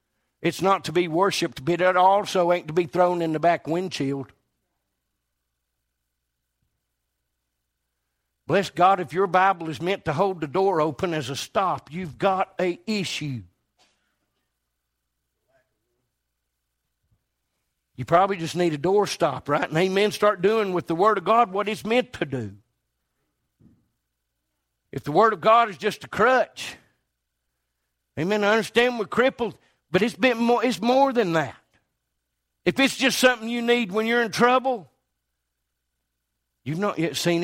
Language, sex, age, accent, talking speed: English, male, 50-69, American, 150 wpm